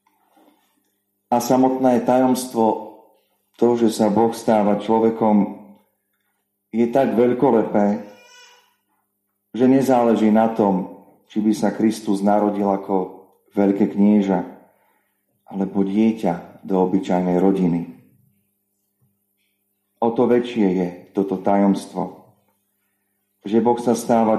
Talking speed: 95 wpm